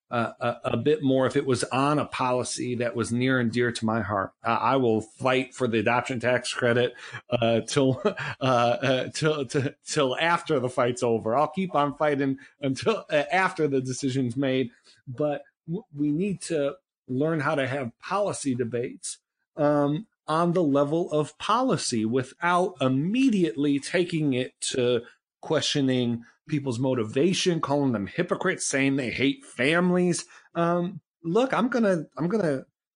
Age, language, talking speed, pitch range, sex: 40-59, English, 155 wpm, 130-155 Hz, male